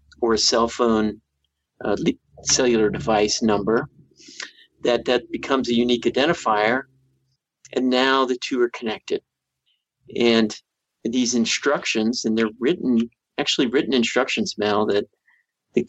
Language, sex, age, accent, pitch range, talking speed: English, male, 50-69, American, 115-130 Hz, 120 wpm